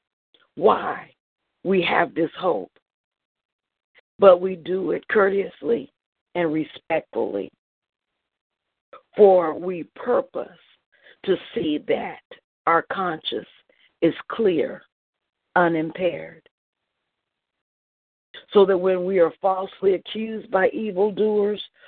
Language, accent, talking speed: English, American, 90 wpm